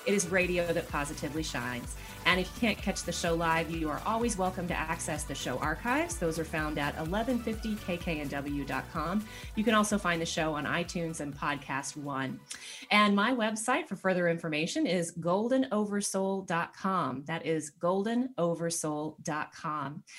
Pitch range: 165-215 Hz